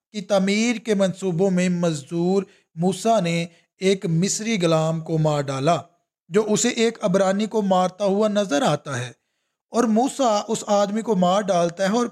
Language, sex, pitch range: English, male, 175-210 Hz